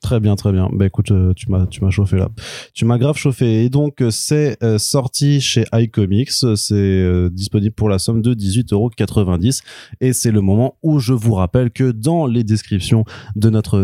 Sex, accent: male, French